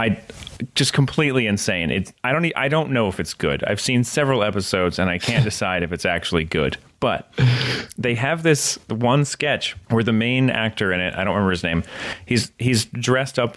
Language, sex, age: English, male, 30-49